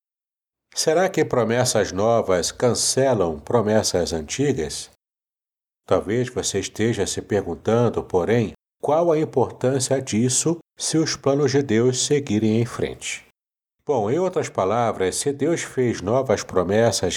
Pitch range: 100-130 Hz